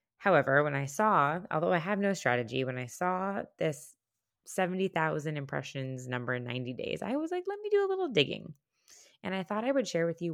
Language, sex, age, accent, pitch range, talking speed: English, female, 20-39, American, 140-190 Hz, 210 wpm